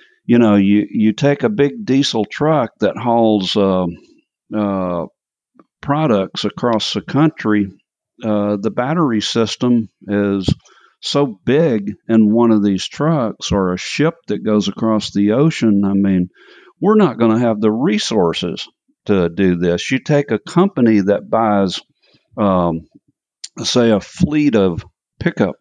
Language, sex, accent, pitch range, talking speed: English, male, American, 100-120 Hz, 145 wpm